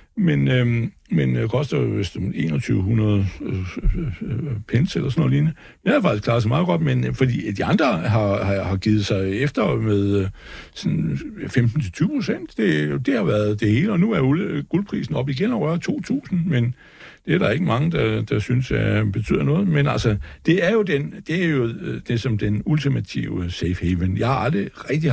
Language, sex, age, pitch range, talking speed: Danish, male, 60-79, 110-160 Hz, 200 wpm